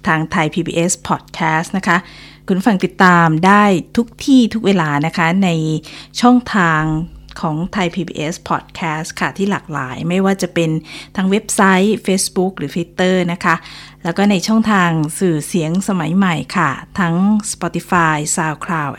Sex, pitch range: female, 160-195 Hz